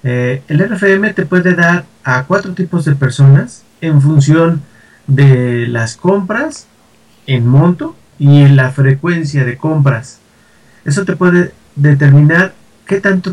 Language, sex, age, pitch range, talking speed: Spanish, male, 40-59, 145-195 Hz, 135 wpm